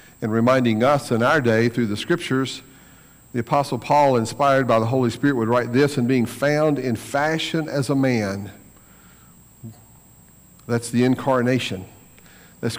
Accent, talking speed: American, 150 wpm